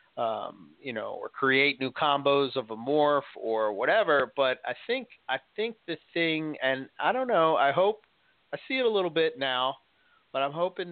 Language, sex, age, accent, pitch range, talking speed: English, male, 40-59, American, 130-175 Hz, 190 wpm